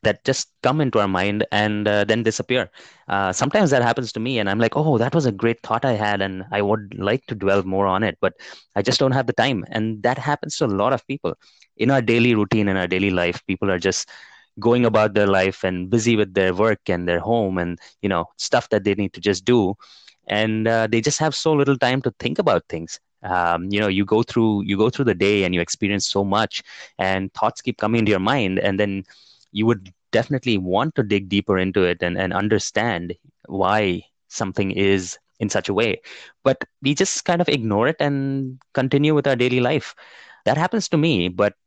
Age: 20-39